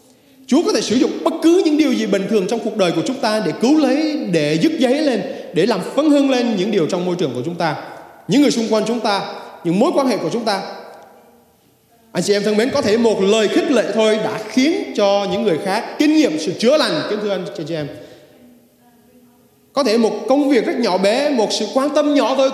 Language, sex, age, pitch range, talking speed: Vietnamese, male, 20-39, 190-270 Hz, 250 wpm